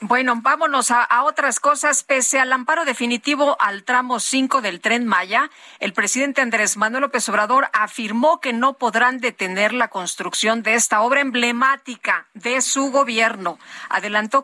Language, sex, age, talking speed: Spanish, female, 40-59, 155 wpm